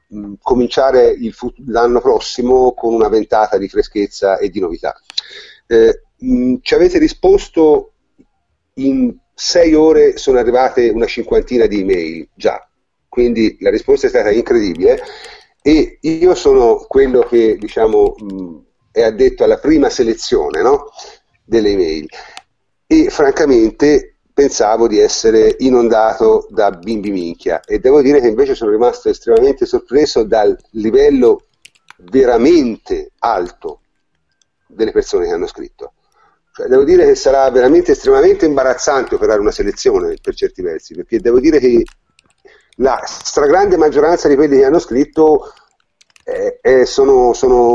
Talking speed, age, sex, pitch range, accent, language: 135 wpm, 40-59, male, 345-425 Hz, native, Italian